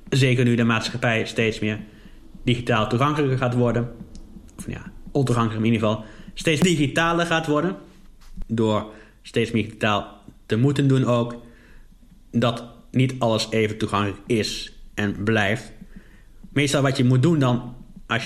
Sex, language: male, Dutch